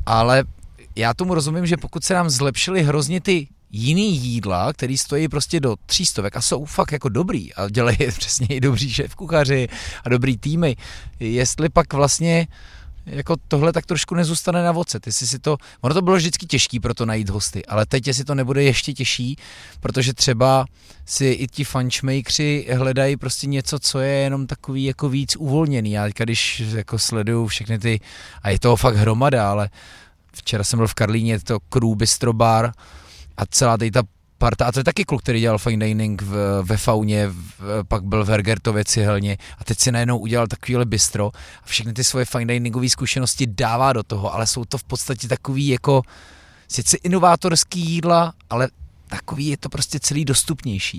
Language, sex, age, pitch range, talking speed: Czech, male, 30-49, 110-145 Hz, 180 wpm